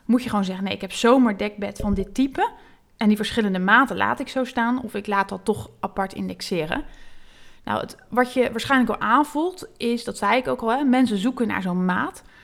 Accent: Dutch